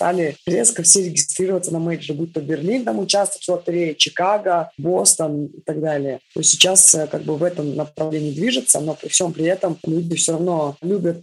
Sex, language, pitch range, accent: female, Russian, 155-180 Hz, native